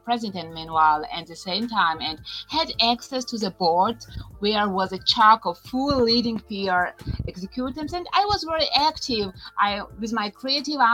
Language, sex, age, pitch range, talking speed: English, female, 30-49, 190-255 Hz, 165 wpm